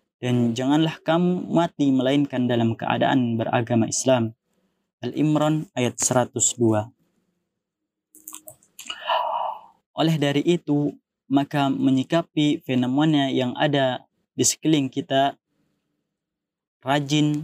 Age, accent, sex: 20-39, native, male